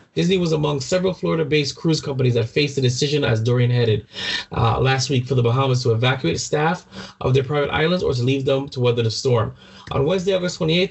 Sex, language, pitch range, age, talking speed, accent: male, English, 125-160 Hz, 20-39, 220 wpm, American